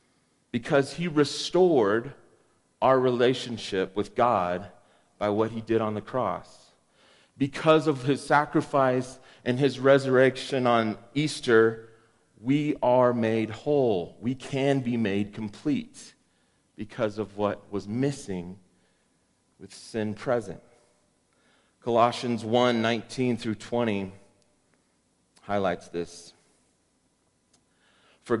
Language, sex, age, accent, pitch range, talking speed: English, male, 40-59, American, 105-130 Hz, 100 wpm